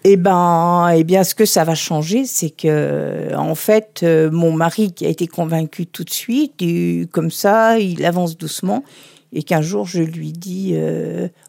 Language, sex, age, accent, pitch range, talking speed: French, female, 50-69, French, 160-205 Hz, 190 wpm